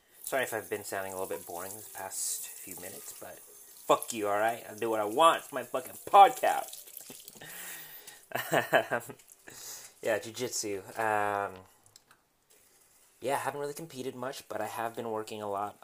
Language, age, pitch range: English, 30-49, 100-115 Hz